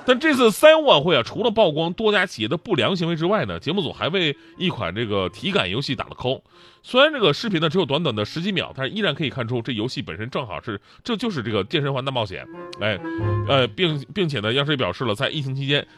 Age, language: 30-49, Chinese